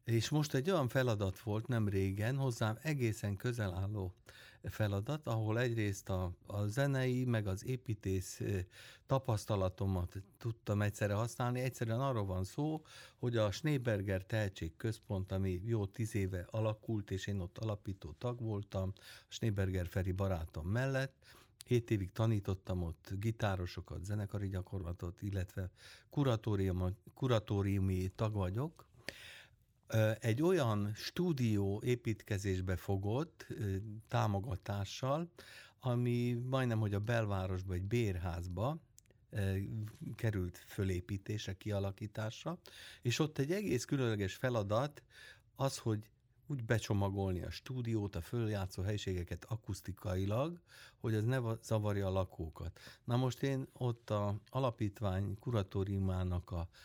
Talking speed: 115 wpm